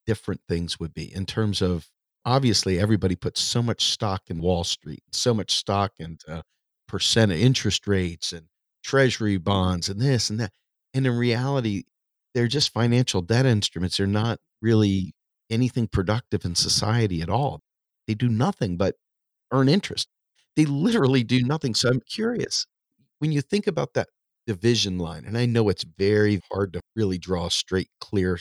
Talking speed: 170 wpm